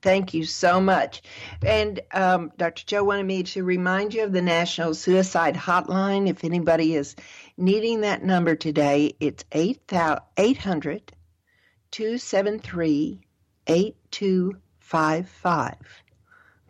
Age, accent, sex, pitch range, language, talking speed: 60-79, American, female, 145-195 Hz, English, 95 wpm